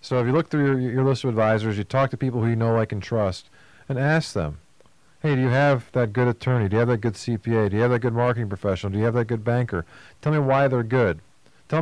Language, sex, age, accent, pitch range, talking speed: English, male, 40-59, American, 120-150 Hz, 280 wpm